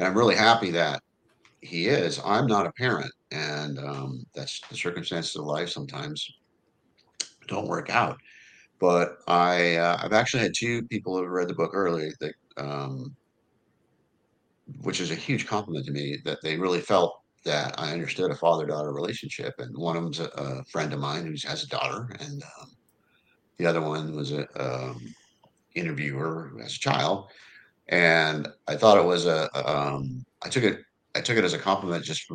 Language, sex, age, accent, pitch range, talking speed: English, male, 50-69, American, 75-95 Hz, 185 wpm